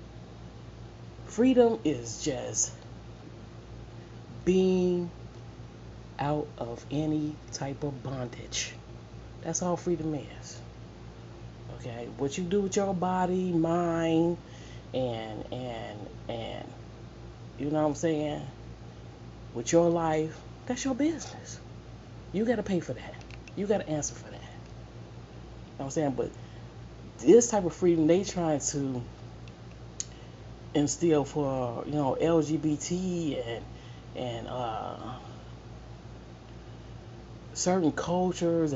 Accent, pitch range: American, 120-175 Hz